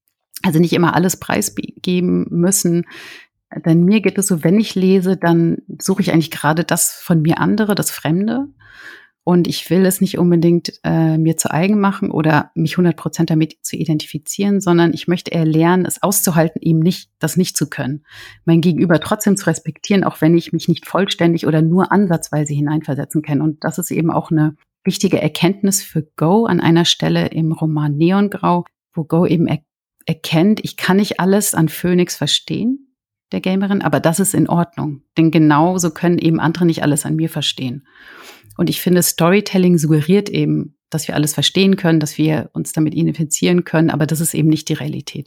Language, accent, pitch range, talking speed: German, German, 155-175 Hz, 185 wpm